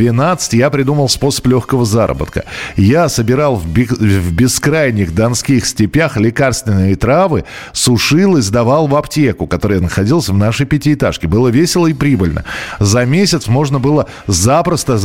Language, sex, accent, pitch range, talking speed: Russian, male, native, 110-150 Hz, 130 wpm